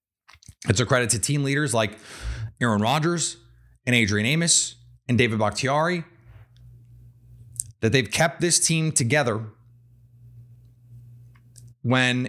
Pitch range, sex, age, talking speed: 110-125 Hz, male, 30-49, 105 wpm